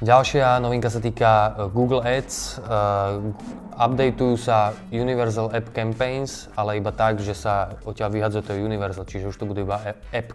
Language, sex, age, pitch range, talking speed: Slovak, male, 20-39, 100-115 Hz, 150 wpm